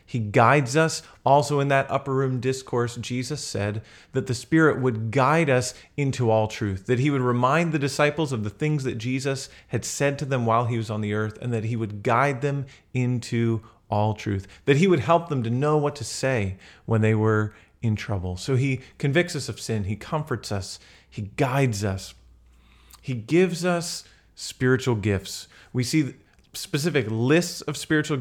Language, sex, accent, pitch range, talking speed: English, male, American, 115-150 Hz, 185 wpm